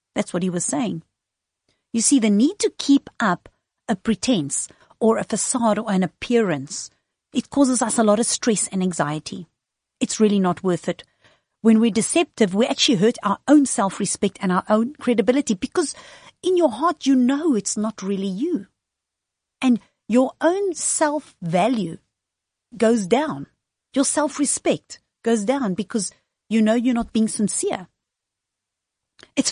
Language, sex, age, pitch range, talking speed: English, female, 50-69, 200-275 Hz, 150 wpm